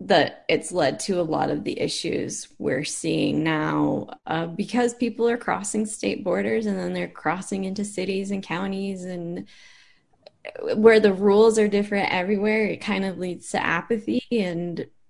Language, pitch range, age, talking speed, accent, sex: English, 175-220 Hz, 10-29, 165 wpm, American, female